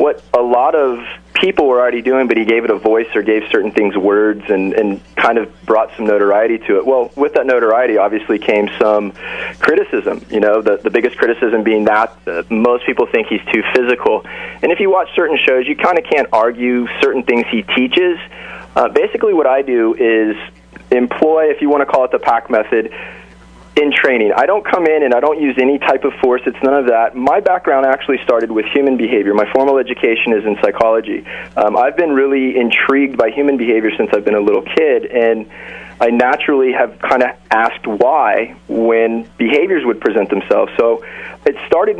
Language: English